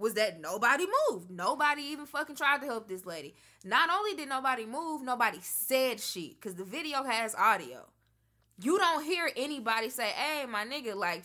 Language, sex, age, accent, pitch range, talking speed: English, female, 20-39, American, 180-265 Hz, 180 wpm